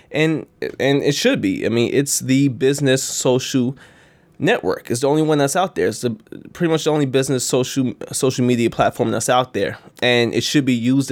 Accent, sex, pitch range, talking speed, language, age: American, male, 120-145 Hz, 205 wpm, Italian, 20-39